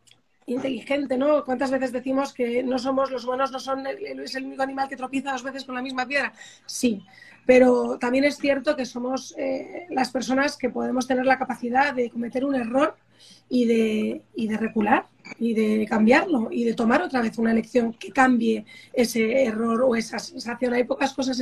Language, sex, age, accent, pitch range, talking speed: Spanish, female, 30-49, Spanish, 230-270 Hz, 185 wpm